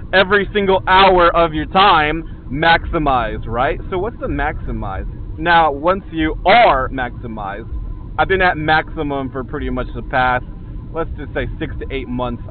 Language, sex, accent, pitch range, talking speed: English, male, American, 125-170 Hz, 160 wpm